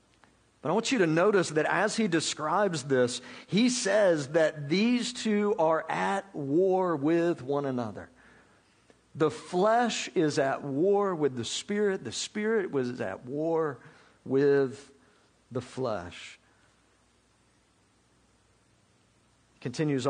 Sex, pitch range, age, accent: male, 140-200 Hz, 50-69, American